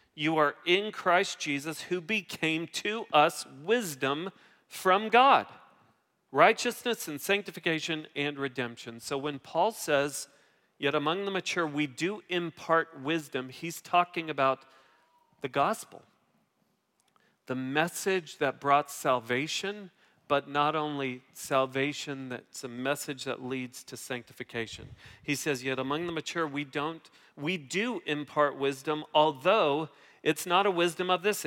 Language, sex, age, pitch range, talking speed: English, male, 40-59, 140-180 Hz, 130 wpm